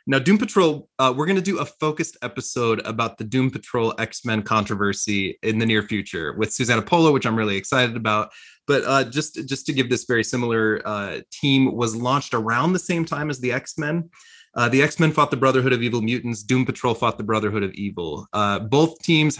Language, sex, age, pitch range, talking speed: English, male, 20-39, 110-140 Hz, 210 wpm